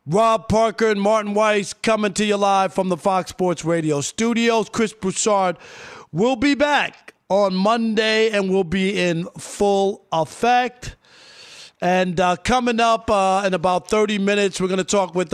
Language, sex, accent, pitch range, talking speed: English, male, American, 180-215 Hz, 165 wpm